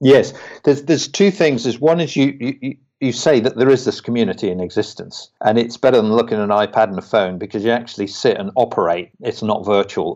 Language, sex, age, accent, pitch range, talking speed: English, male, 50-69, British, 105-130 Hz, 230 wpm